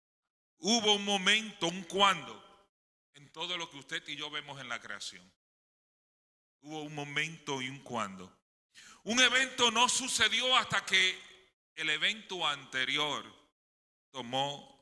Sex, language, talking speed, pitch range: male, English, 130 wpm, 130-205 Hz